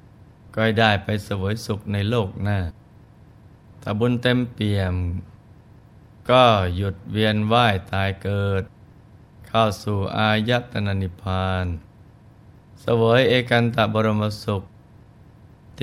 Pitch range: 100-120 Hz